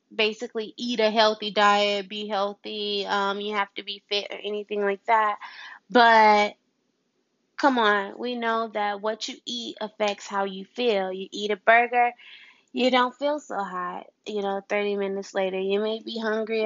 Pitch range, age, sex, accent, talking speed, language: 200-235 Hz, 20-39, female, American, 175 wpm, English